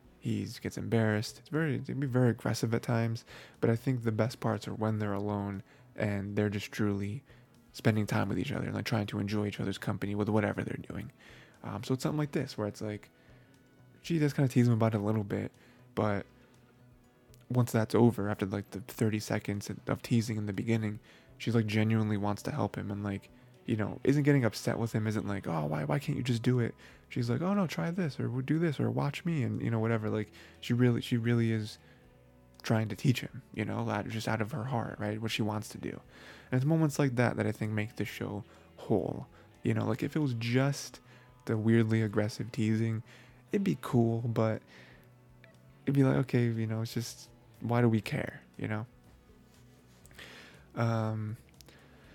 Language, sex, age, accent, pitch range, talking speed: English, male, 20-39, American, 105-125 Hz, 210 wpm